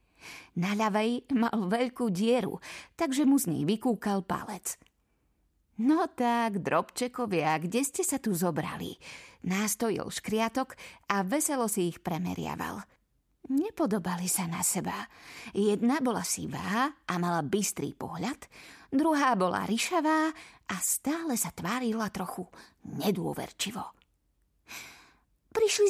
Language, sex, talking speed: Slovak, female, 110 wpm